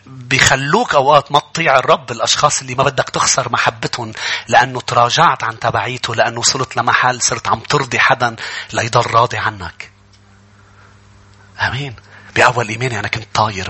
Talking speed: 140 wpm